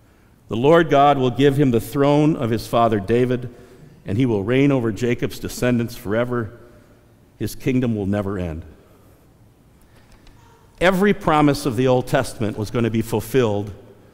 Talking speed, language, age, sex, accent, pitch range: 155 wpm, English, 50-69, male, American, 110-150 Hz